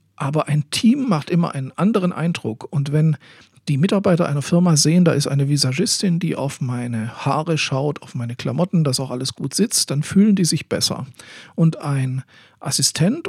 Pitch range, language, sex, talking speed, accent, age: 140-180 Hz, German, male, 180 wpm, German, 50-69